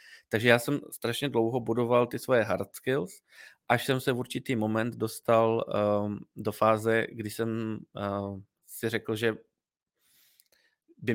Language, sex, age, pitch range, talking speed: Czech, male, 20-39, 105-120 Hz, 145 wpm